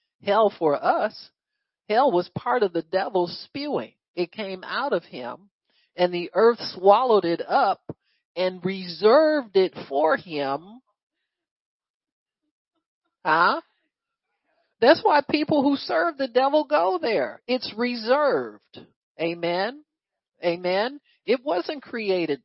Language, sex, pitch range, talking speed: English, male, 175-245 Hz, 115 wpm